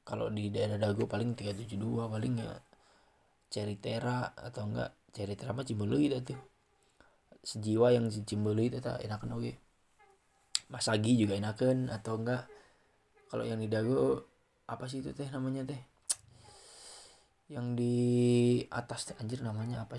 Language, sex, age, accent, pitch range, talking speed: Indonesian, male, 20-39, native, 115-140 Hz, 120 wpm